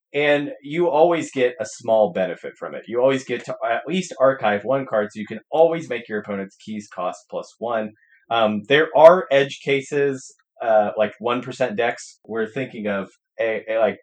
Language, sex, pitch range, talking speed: English, male, 105-145 Hz, 190 wpm